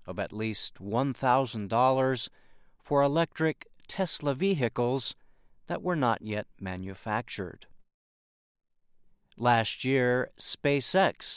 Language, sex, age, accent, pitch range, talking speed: English, male, 50-69, American, 105-150 Hz, 85 wpm